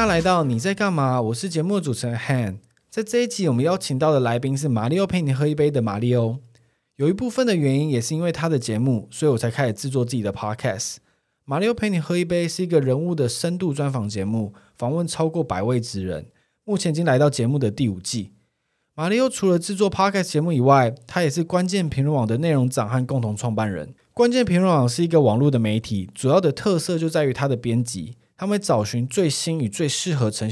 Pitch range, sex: 120-170 Hz, male